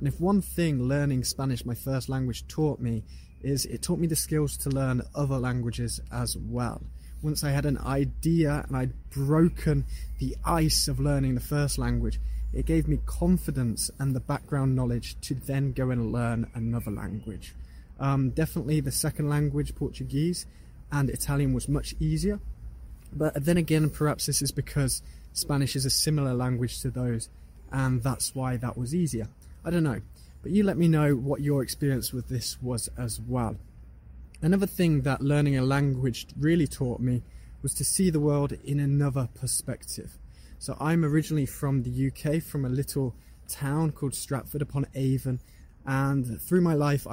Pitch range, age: 120-145 Hz, 20-39